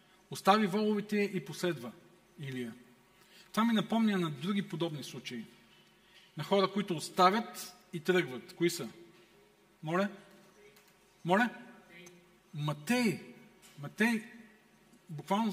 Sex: male